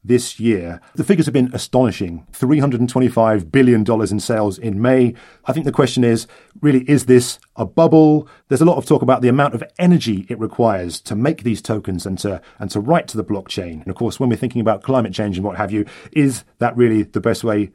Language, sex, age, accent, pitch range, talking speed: English, male, 40-59, British, 105-135 Hz, 225 wpm